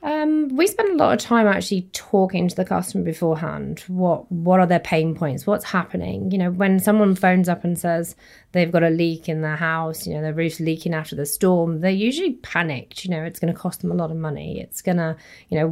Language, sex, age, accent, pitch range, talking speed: English, female, 30-49, British, 160-185 Hz, 240 wpm